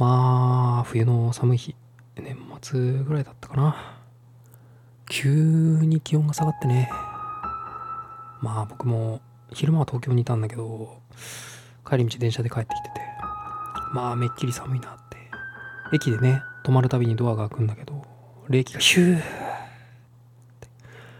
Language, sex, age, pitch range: Japanese, male, 20-39, 120-155 Hz